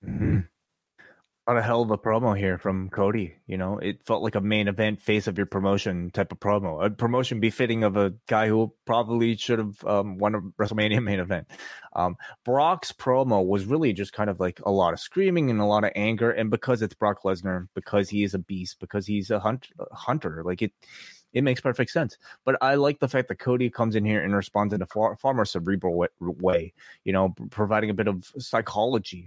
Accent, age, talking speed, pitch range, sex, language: American, 20-39, 220 wpm, 95-115 Hz, male, English